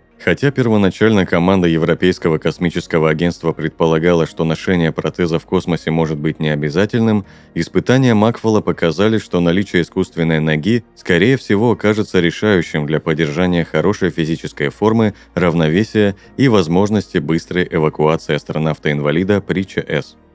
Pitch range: 80-100 Hz